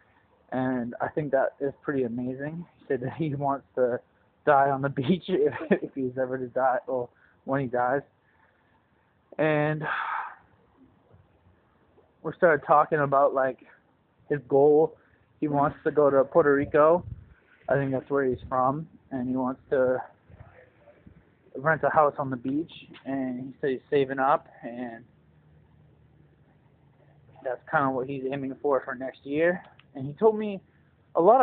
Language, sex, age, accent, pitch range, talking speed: English, male, 20-39, American, 130-155 Hz, 155 wpm